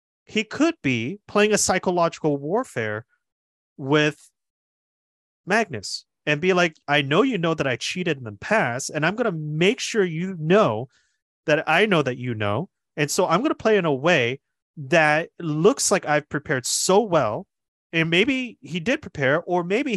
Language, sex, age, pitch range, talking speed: English, male, 30-49, 130-180 Hz, 175 wpm